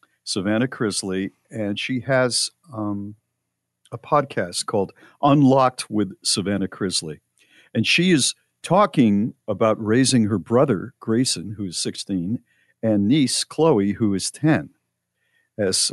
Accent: American